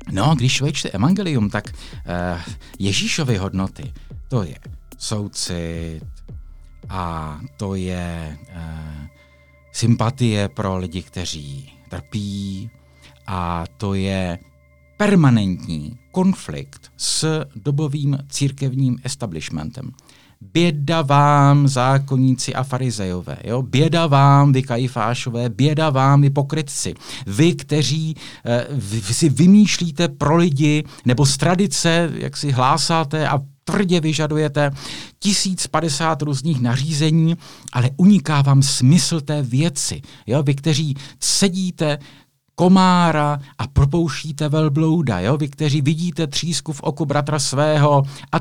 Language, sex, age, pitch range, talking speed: Czech, male, 50-69, 110-155 Hz, 100 wpm